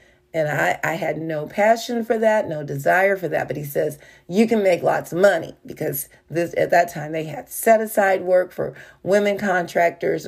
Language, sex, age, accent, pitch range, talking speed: English, female, 40-59, American, 165-205 Hz, 200 wpm